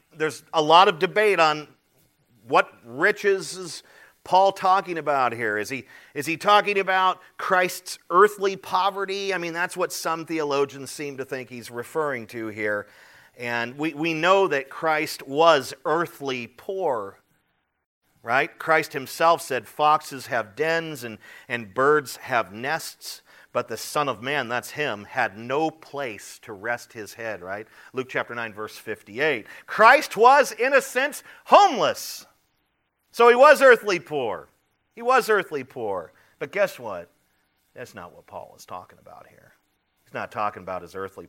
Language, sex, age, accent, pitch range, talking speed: English, male, 40-59, American, 120-190 Hz, 155 wpm